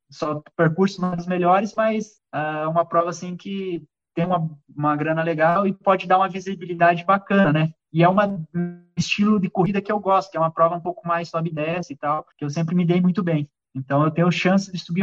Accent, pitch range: Brazilian, 165-200 Hz